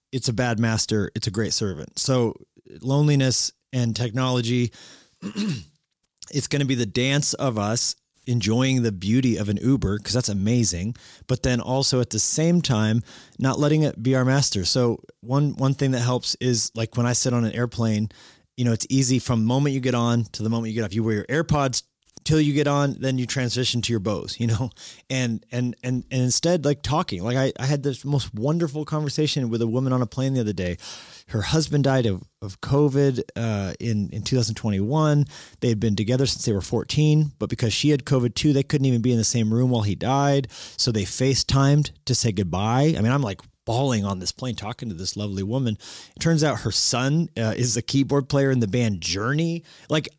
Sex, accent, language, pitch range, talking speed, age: male, American, English, 115-145 Hz, 215 wpm, 30-49